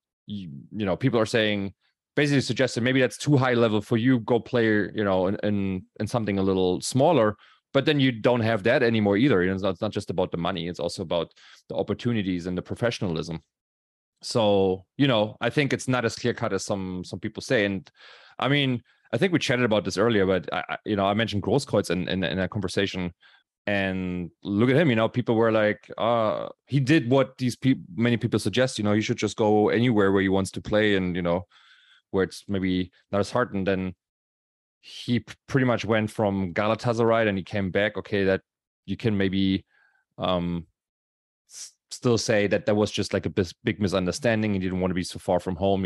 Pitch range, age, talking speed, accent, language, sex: 95-120 Hz, 30-49, 220 wpm, German, English, male